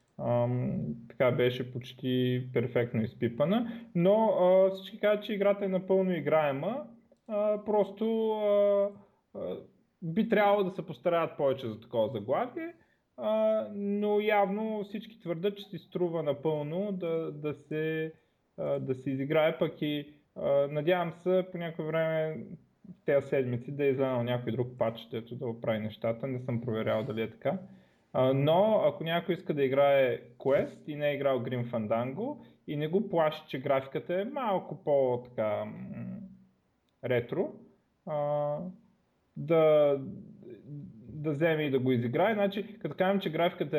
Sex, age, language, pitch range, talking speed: male, 20-39, Bulgarian, 135-195 Hz, 150 wpm